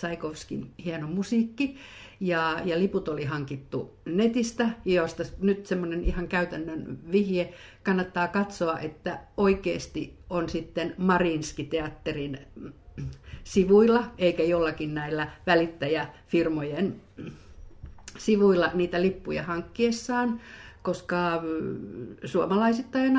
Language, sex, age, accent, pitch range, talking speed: Finnish, female, 50-69, native, 160-195 Hz, 90 wpm